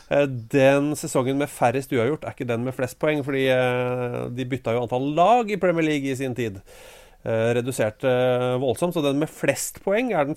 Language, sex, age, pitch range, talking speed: English, male, 30-49, 120-160 Hz, 210 wpm